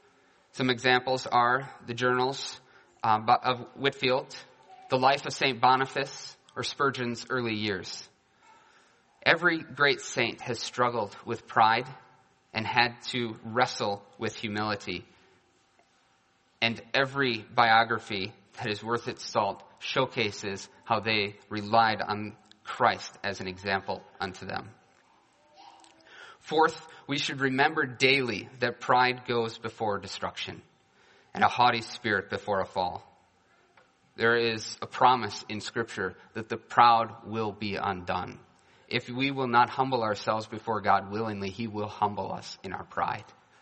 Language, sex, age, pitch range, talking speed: English, male, 30-49, 105-130 Hz, 130 wpm